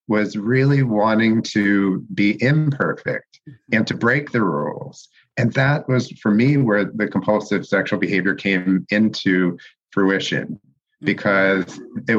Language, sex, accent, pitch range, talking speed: English, male, American, 100-125 Hz, 130 wpm